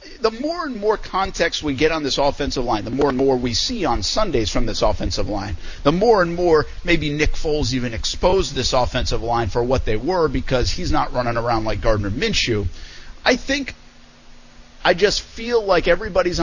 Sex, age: male, 50-69